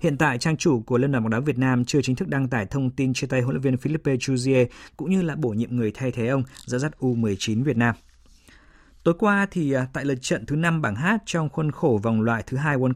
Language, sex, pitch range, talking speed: Vietnamese, male, 120-155 Hz, 265 wpm